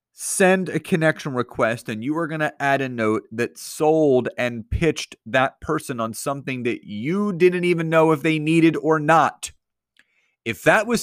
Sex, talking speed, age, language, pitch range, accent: male, 180 wpm, 30-49, English, 135-195 Hz, American